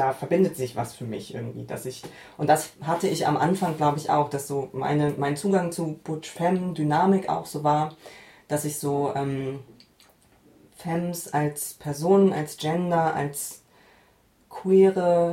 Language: German